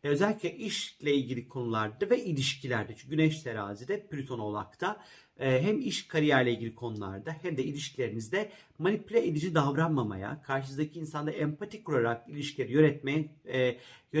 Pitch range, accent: 125-185 Hz, native